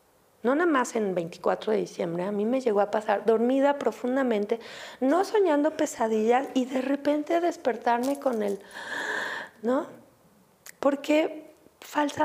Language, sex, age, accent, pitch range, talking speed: Spanish, female, 40-59, Mexican, 200-275 Hz, 130 wpm